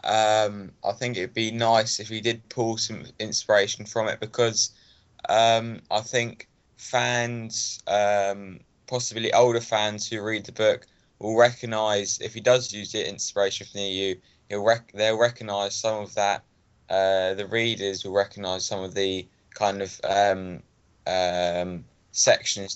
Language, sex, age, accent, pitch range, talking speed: English, male, 20-39, British, 100-115 Hz, 155 wpm